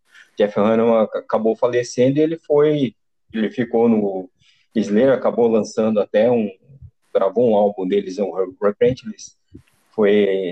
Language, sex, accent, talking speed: Portuguese, male, Brazilian, 125 wpm